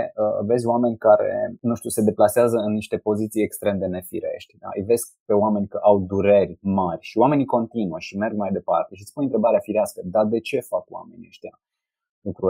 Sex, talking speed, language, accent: male, 190 wpm, Romanian, native